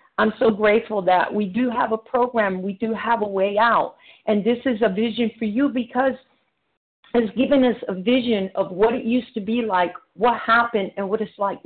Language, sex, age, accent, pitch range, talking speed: English, female, 50-69, American, 185-230 Hz, 210 wpm